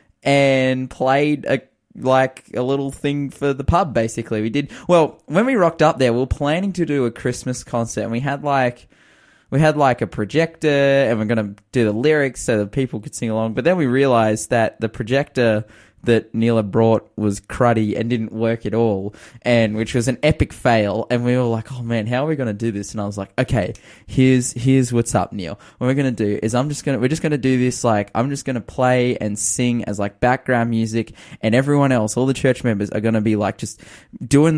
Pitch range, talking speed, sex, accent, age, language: 110-135 Hz, 225 wpm, male, Australian, 20-39, English